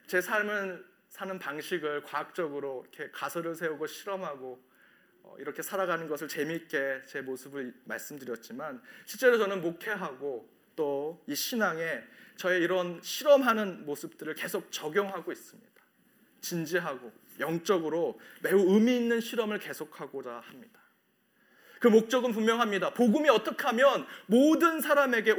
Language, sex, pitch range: Korean, male, 165-230 Hz